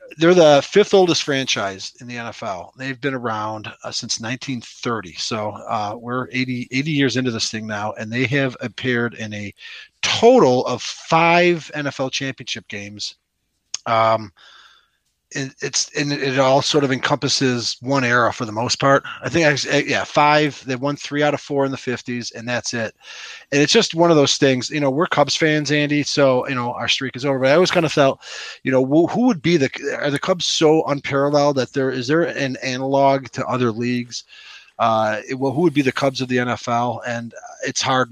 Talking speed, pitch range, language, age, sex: 195 wpm, 120-145 Hz, English, 30-49, male